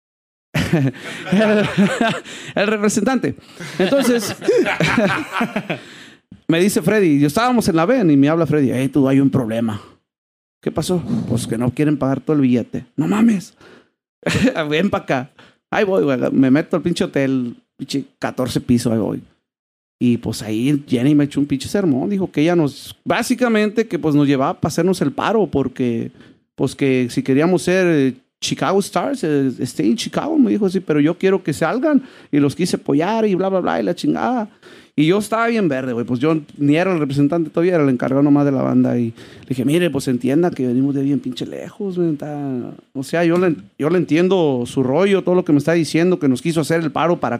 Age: 40-59